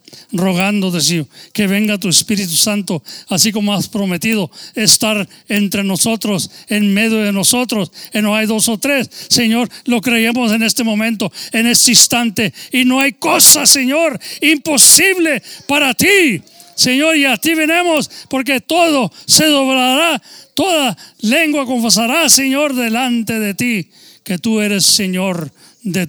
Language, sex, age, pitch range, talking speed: English, male, 40-59, 175-240 Hz, 145 wpm